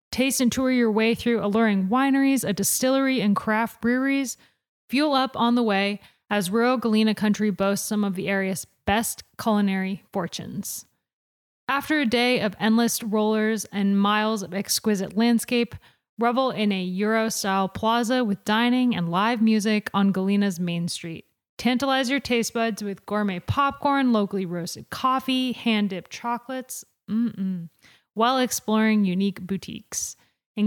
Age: 20-39